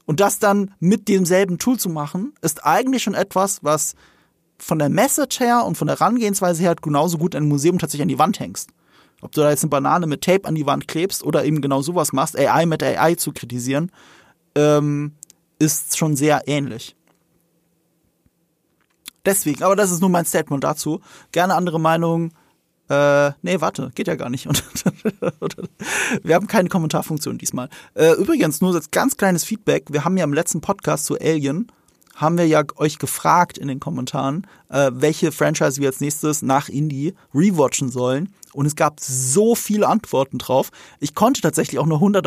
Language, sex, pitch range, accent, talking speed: German, male, 145-190 Hz, German, 180 wpm